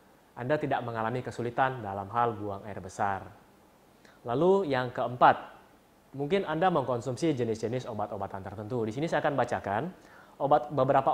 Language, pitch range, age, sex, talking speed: Indonesian, 110-140 Hz, 30-49, male, 135 wpm